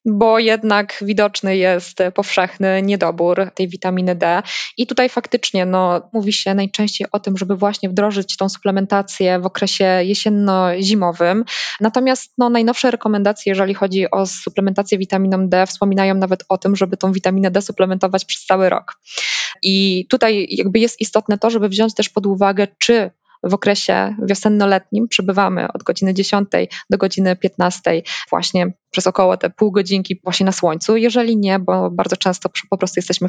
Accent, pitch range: native, 180-205 Hz